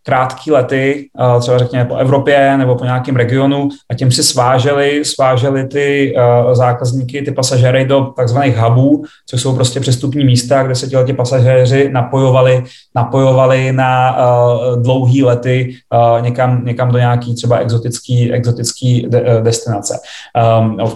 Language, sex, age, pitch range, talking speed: Czech, male, 30-49, 125-140 Hz, 135 wpm